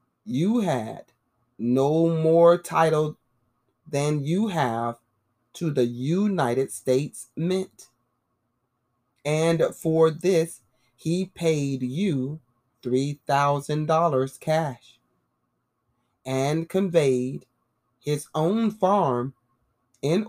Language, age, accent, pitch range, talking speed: English, 30-49, American, 125-165 Hz, 80 wpm